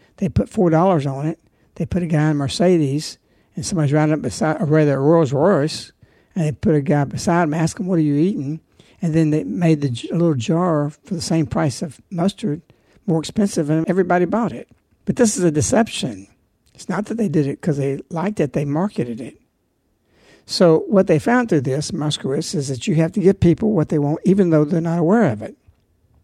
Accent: American